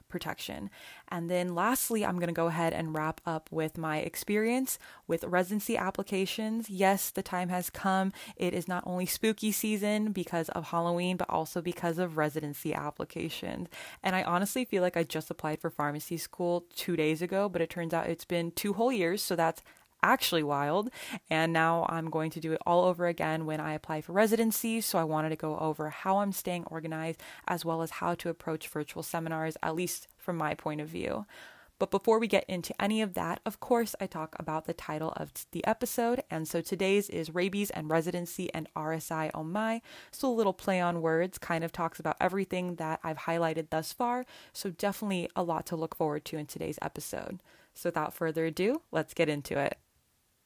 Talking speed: 200 wpm